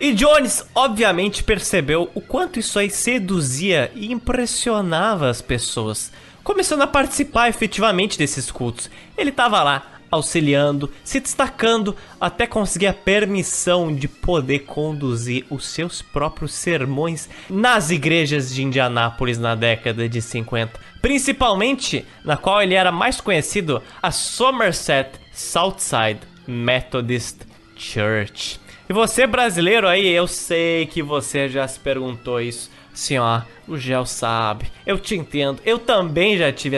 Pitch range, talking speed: 130-200 Hz, 130 wpm